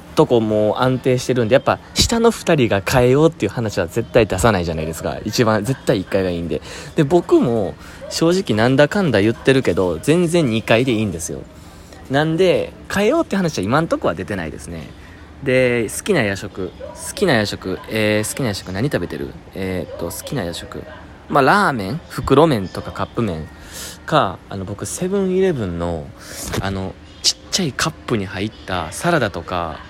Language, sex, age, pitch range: Japanese, male, 20-39, 90-125 Hz